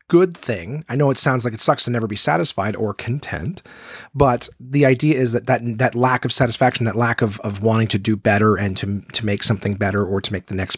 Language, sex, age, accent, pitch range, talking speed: English, male, 30-49, American, 105-140 Hz, 245 wpm